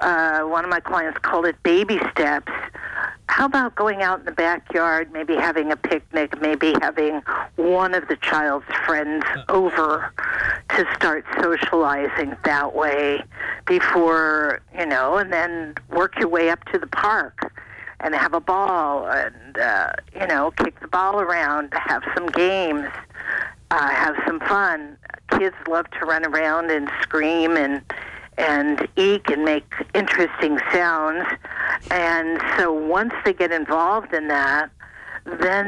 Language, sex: English, female